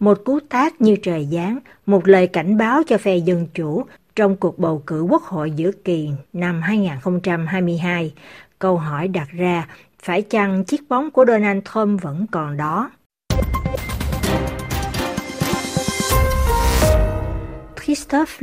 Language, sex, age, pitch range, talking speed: Vietnamese, female, 60-79, 170-210 Hz, 125 wpm